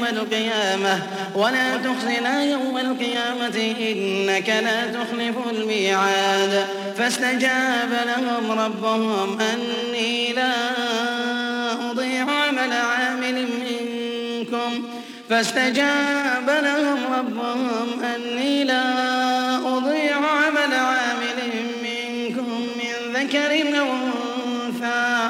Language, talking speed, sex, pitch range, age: Arabic, 70 wpm, male, 225-255 Hz, 30-49